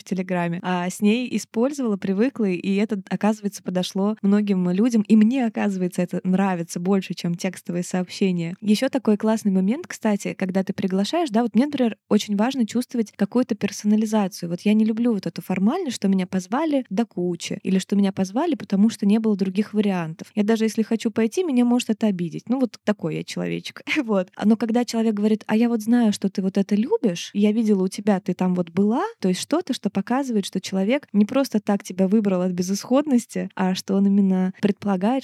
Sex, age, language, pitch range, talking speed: female, 20-39, Russian, 190-225 Hz, 200 wpm